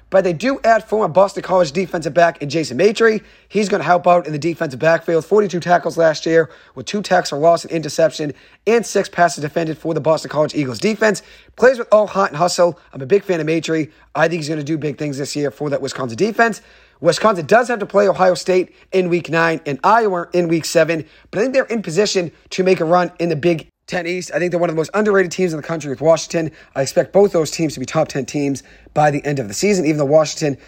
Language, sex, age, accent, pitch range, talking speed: English, male, 30-49, American, 150-195 Hz, 260 wpm